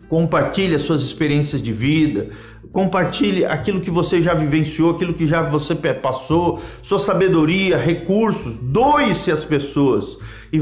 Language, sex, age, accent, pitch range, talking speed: Portuguese, male, 50-69, Brazilian, 130-185 Hz, 135 wpm